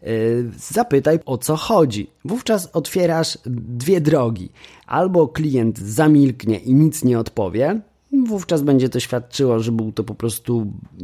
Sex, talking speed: male, 130 wpm